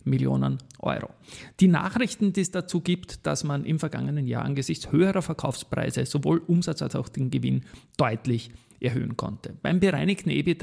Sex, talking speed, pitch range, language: male, 160 wpm, 130-165 Hz, German